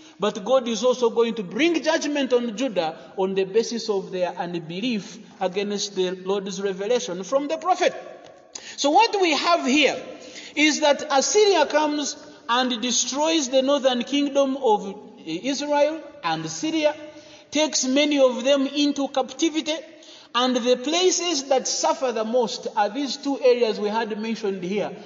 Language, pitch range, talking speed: English, 215-275 Hz, 150 wpm